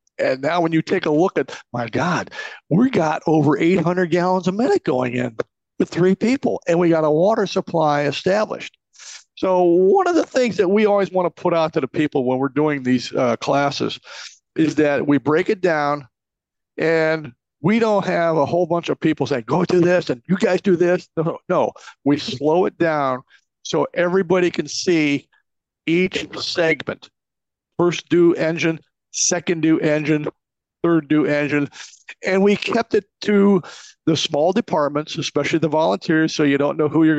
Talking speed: 180 wpm